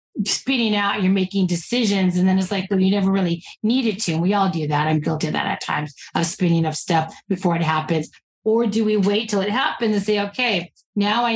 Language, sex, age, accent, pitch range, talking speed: English, female, 40-59, American, 195-255 Hz, 240 wpm